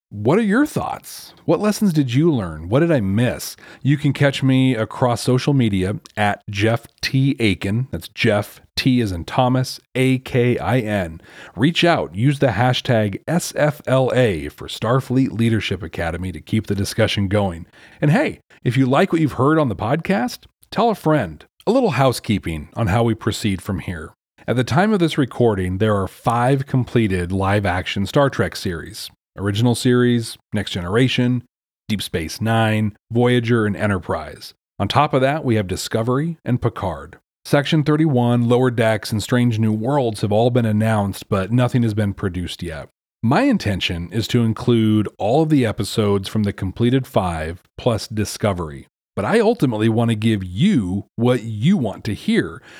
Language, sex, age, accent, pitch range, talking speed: English, male, 40-59, American, 100-130 Hz, 170 wpm